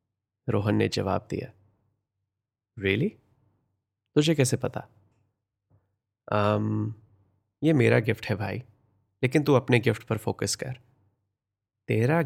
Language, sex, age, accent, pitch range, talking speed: Hindi, male, 30-49, native, 105-125 Hz, 115 wpm